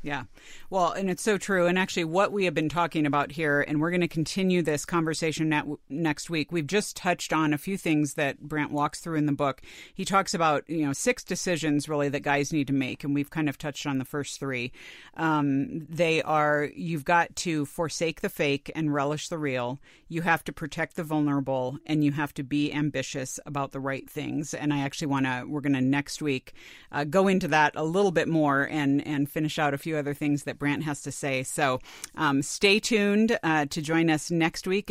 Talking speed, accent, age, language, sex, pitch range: 225 wpm, American, 40-59, English, female, 145-180 Hz